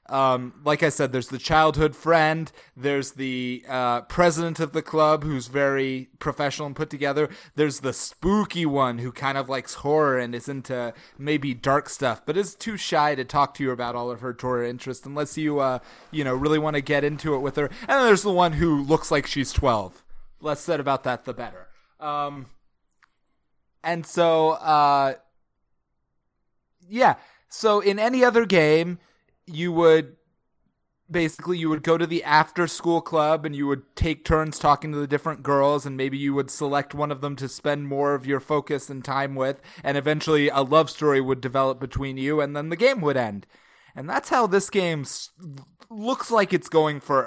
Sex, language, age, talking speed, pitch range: male, English, 20-39, 195 wpm, 135-160 Hz